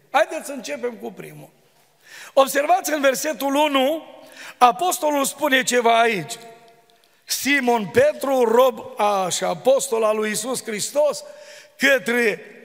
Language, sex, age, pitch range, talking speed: Romanian, male, 40-59, 240-300 Hz, 110 wpm